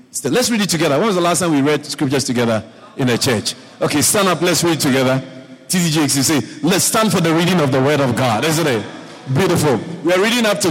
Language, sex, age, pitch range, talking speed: English, male, 50-69, 115-140 Hz, 225 wpm